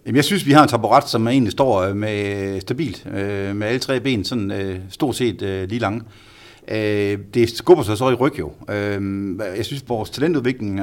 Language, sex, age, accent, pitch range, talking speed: Danish, male, 60-79, native, 100-125 Hz, 210 wpm